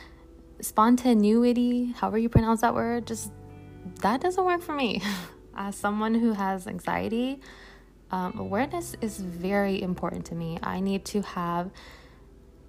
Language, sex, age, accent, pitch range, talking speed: English, female, 20-39, American, 175-205 Hz, 130 wpm